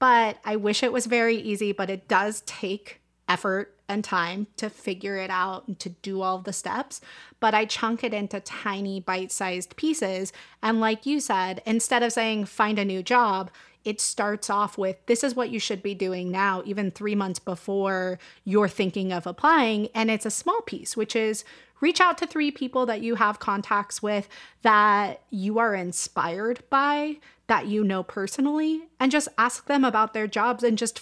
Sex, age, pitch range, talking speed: female, 30-49, 195-240 Hz, 190 wpm